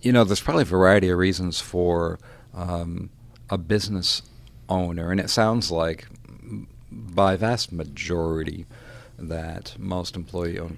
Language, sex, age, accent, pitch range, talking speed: English, male, 40-59, American, 80-110 Hz, 130 wpm